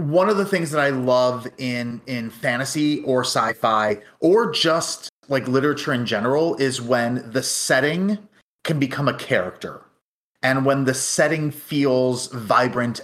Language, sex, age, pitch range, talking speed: English, male, 30-49, 120-145 Hz, 145 wpm